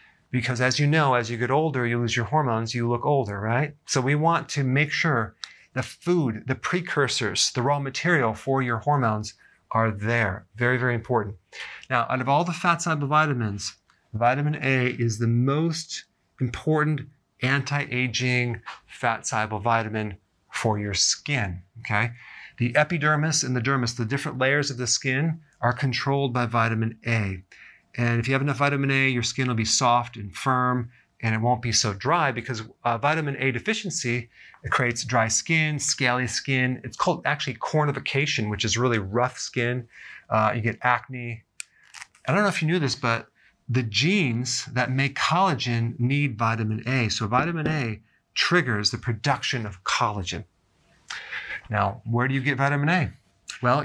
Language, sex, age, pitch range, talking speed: English, male, 40-59, 115-145 Hz, 165 wpm